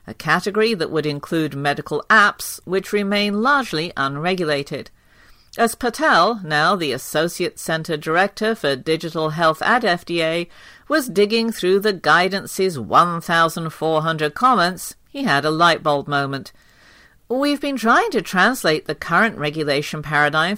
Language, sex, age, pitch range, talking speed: English, female, 50-69, 155-210 Hz, 130 wpm